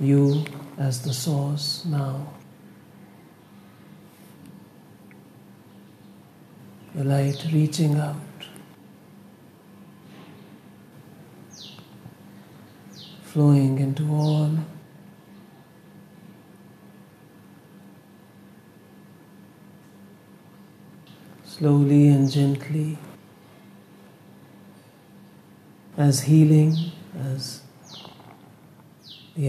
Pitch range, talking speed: 140-155 Hz, 40 wpm